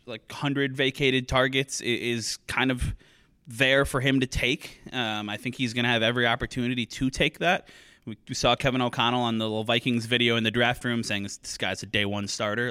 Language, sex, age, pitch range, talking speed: English, male, 20-39, 115-140 Hz, 215 wpm